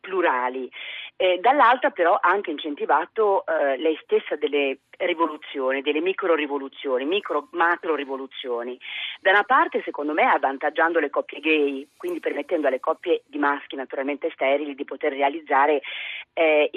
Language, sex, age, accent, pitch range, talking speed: Italian, female, 40-59, native, 145-205 Hz, 140 wpm